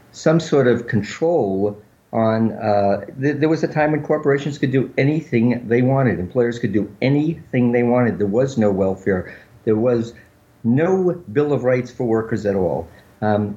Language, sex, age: English, male, 50-69